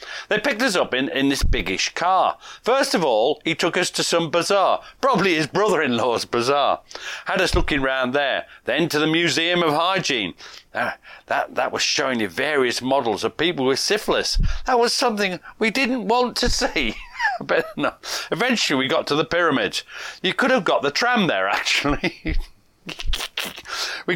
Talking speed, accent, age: 180 wpm, British, 40-59